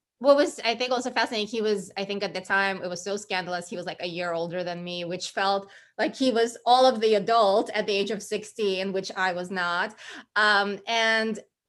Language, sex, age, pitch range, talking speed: English, female, 20-39, 195-235 Hz, 230 wpm